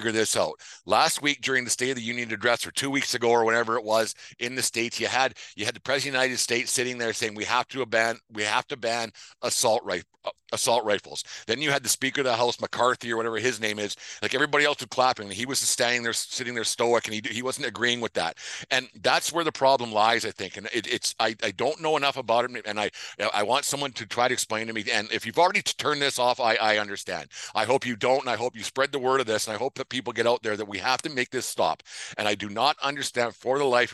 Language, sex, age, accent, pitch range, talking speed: English, male, 50-69, American, 110-130 Hz, 280 wpm